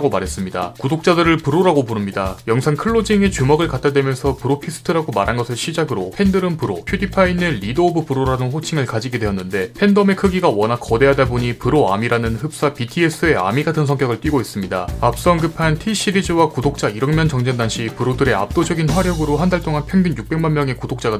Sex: male